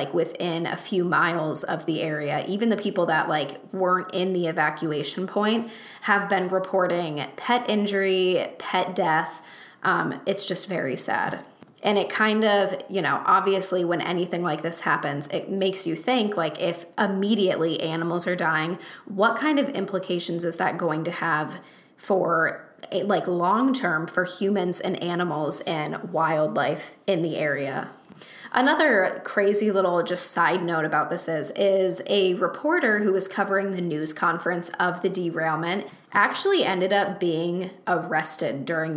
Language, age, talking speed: English, 10-29, 155 wpm